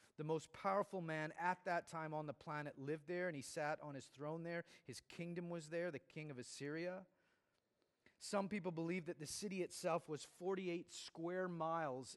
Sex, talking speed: male, 185 wpm